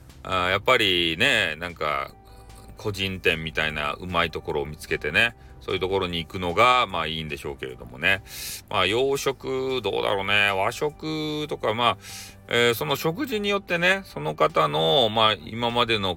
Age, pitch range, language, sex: 40-59, 80-115 Hz, Japanese, male